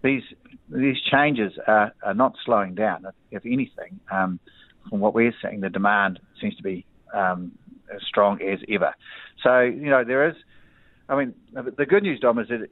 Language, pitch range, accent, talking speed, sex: English, 100-125 Hz, Australian, 185 wpm, male